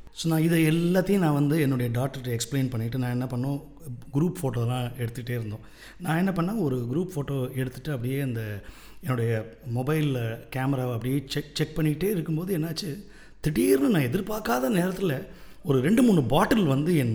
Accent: native